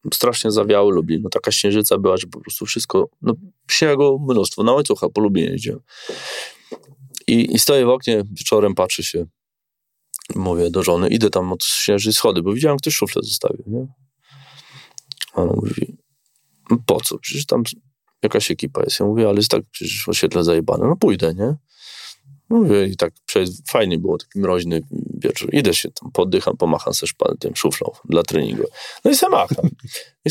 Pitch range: 100-145 Hz